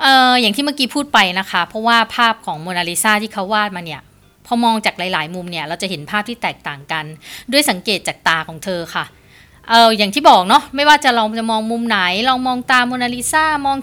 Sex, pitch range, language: female, 185-255 Hz, Thai